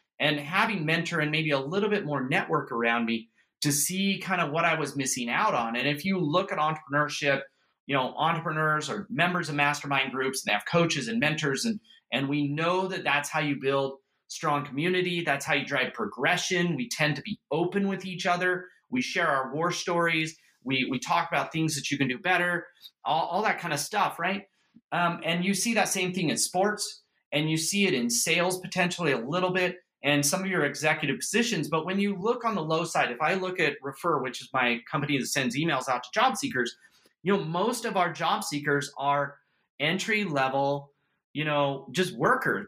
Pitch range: 145-190 Hz